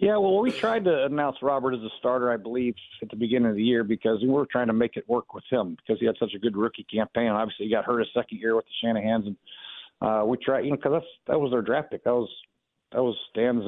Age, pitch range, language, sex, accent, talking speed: 50-69, 110-130 Hz, English, male, American, 275 wpm